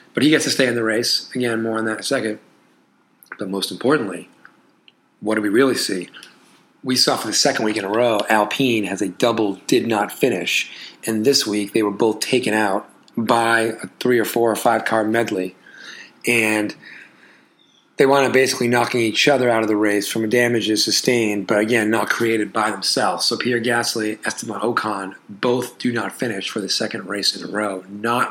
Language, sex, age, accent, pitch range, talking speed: English, male, 30-49, American, 110-125 Hz, 195 wpm